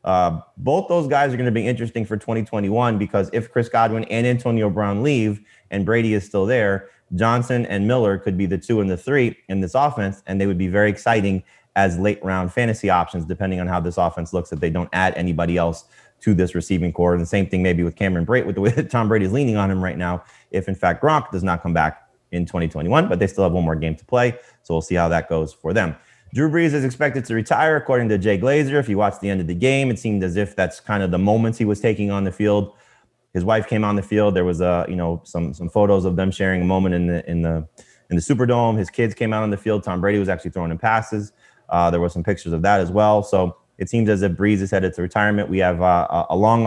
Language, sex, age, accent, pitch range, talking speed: English, male, 30-49, American, 90-110 Hz, 270 wpm